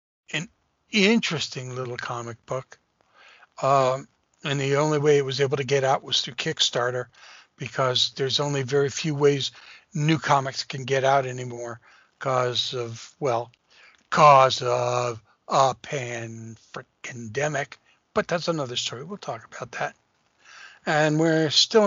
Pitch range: 130-170 Hz